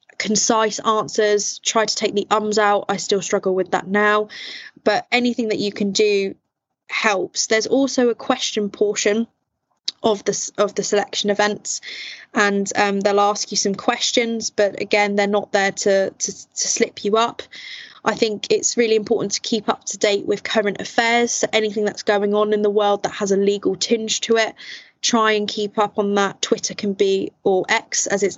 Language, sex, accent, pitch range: English, female, British, 205-235 Hz